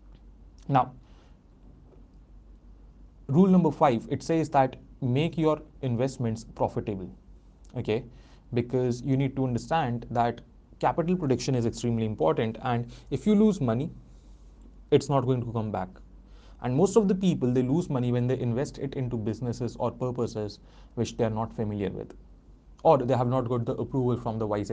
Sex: male